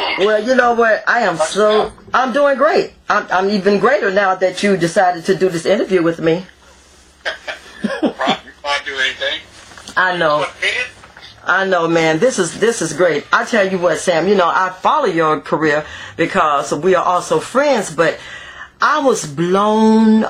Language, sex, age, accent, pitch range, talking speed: English, female, 40-59, American, 165-210 Hz, 170 wpm